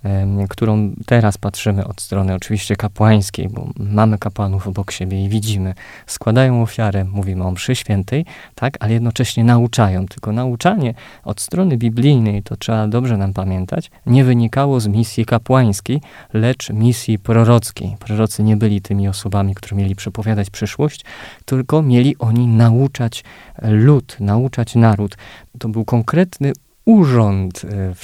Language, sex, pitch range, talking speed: Polish, male, 105-130 Hz, 135 wpm